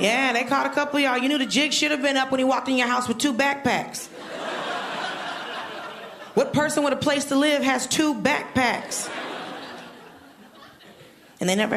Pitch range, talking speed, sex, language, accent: 185-250 Hz, 190 wpm, female, English, American